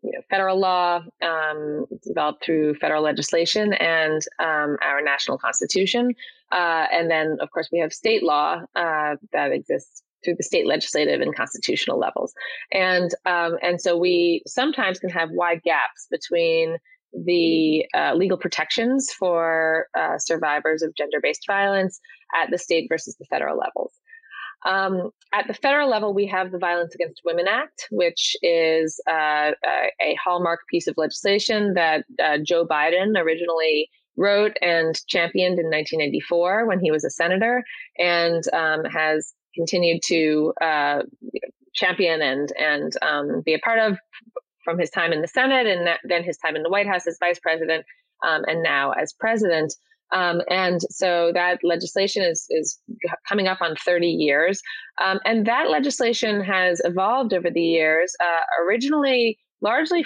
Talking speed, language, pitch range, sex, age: 155 wpm, English, 165-225 Hz, female, 20-39